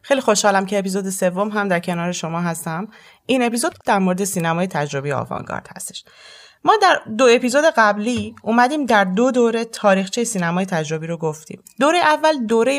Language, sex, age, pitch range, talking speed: Persian, female, 30-49, 175-235 Hz, 165 wpm